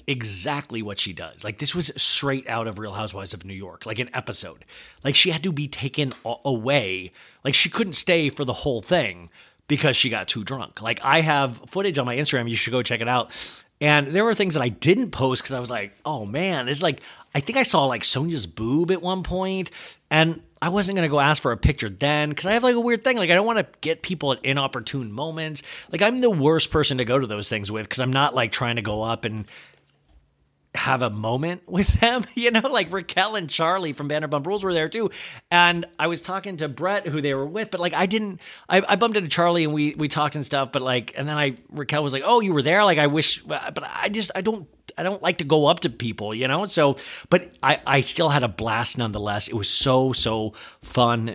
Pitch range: 125-175 Hz